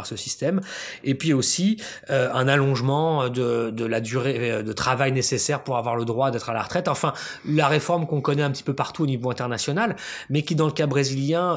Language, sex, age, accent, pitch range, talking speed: French, male, 20-39, French, 125-155 Hz, 215 wpm